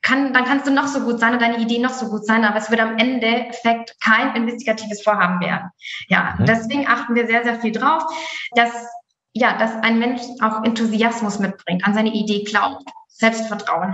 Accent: German